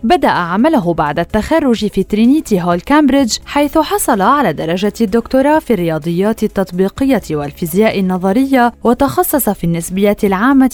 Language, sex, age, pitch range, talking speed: Arabic, female, 20-39, 180-260 Hz, 125 wpm